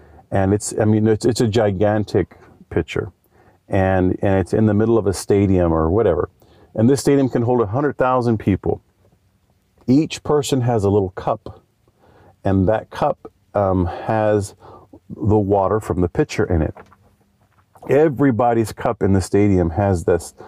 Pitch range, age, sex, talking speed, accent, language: 90-110 Hz, 40-59, male, 160 wpm, American, English